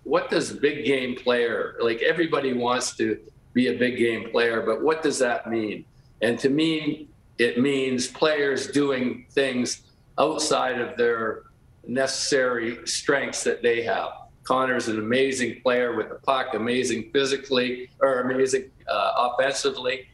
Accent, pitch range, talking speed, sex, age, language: American, 115-135 Hz, 145 wpm, male, 50-69, English